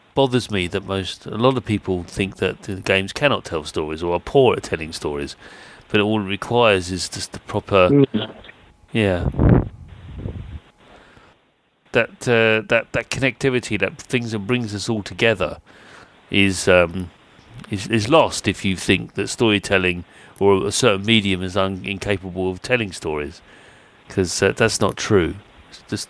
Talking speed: 155 wpm